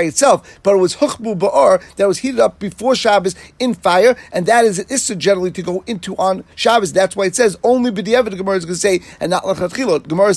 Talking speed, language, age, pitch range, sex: 245 wpm, English, 40-59, 185-220 Hz, male